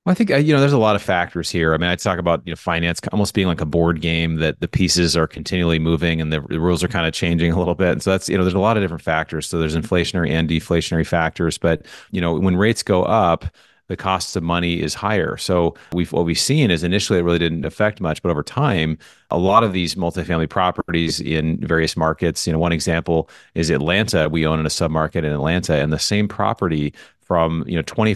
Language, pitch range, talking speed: English, 80-95 Hz, 245 wpm